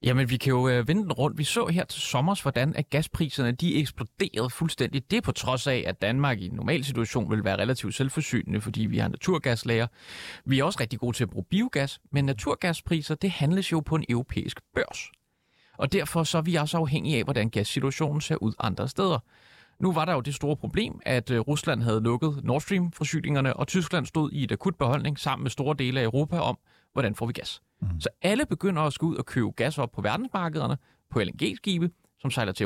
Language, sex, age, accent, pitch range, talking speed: Danish, male, 30-49, native, 125-175 Hz, 215 wpm